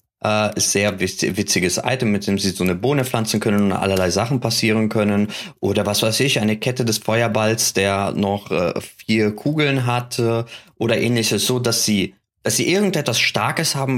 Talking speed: 180 wpm